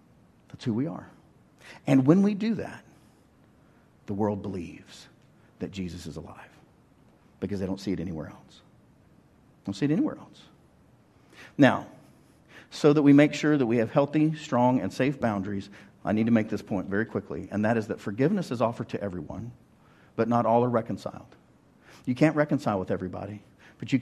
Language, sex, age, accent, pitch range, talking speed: English, male, 50-69, American, 100-130 Hz, 175 wpm